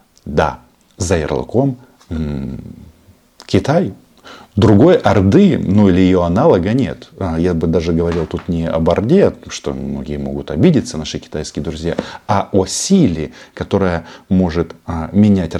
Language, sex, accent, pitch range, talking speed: Russian, male, native, 80-100 Hz, 125 wpm